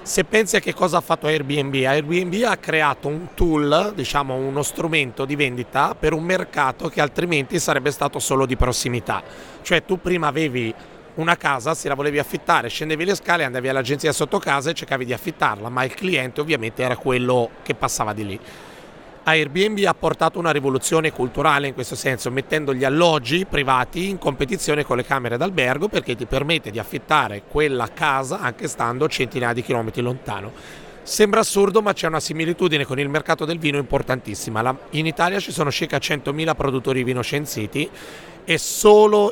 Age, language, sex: 30-49, Italian, male